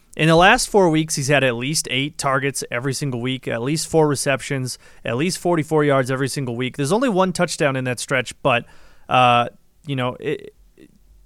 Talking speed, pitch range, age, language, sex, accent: 195 wpm, 135-165 Hz, 30-49, English, male, American